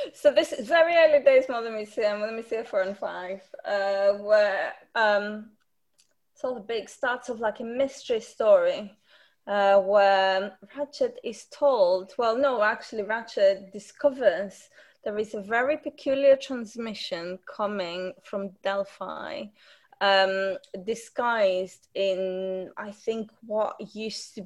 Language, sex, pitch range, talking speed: English, female, 200-275 Hz, 130 wpm